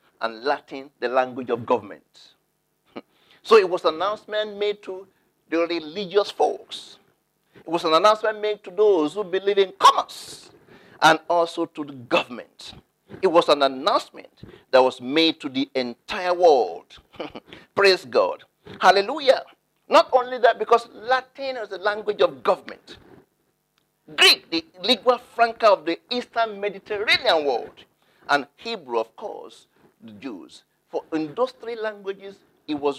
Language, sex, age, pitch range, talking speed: English, male, 50-69, 155-215 Hz, 140 wpm